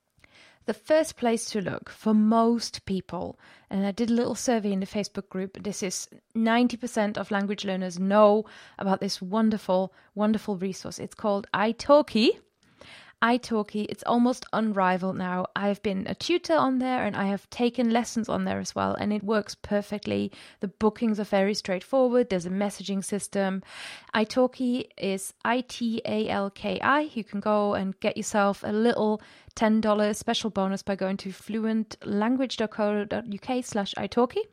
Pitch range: 195-230 Hz